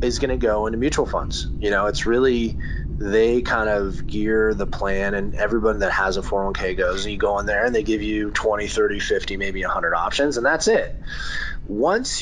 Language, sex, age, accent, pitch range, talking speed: English, male, 20-39, American, 100-130 Hz, 205 wpm